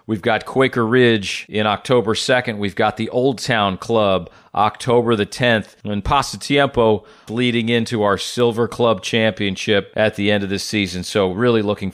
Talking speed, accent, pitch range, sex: 165 wpm, American, 105-130 Hz, male